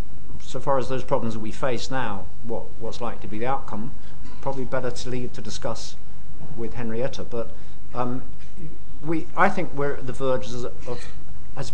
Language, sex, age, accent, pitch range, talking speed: English, male, 50-69, British, 100-130 Hz, 185 wpm